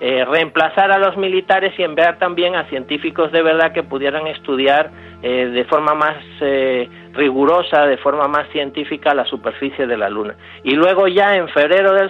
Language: Spanish